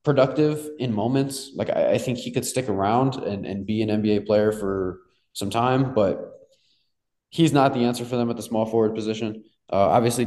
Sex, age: male, 20-39